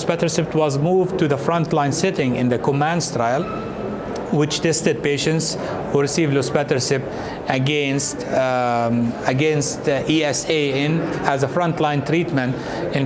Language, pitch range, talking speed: English, 130-155 Hz, 130 wpm